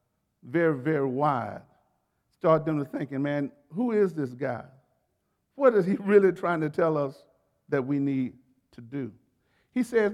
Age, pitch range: 50-69, 155-210 Hz